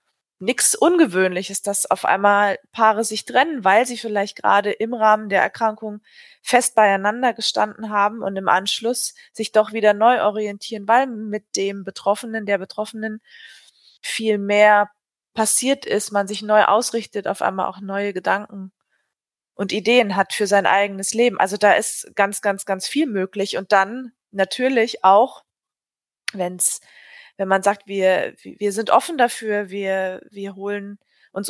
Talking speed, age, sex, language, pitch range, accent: 150 wpm, 20-39, female, German, 195-225 Hz, German